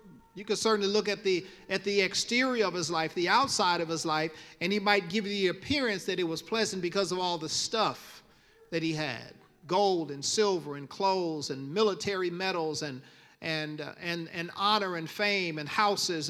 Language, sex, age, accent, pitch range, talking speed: English, male, 50-69, American, 155-195 Hz, 195 wpm